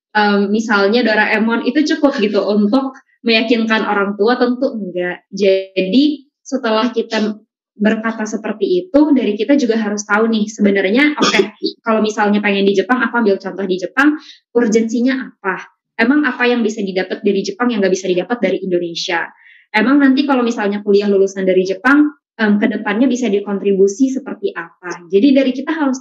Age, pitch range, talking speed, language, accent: 20-39, 200-255 Hz, 160 wpm, Indonesian, native